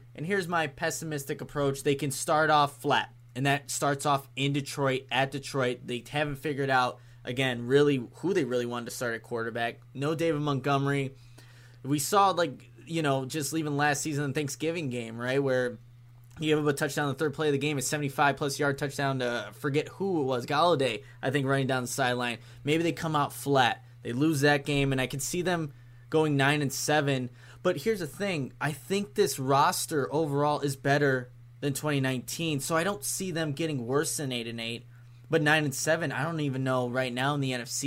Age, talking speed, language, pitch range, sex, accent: 20-39, 210 wpm, English, 125-145 Hz, male, American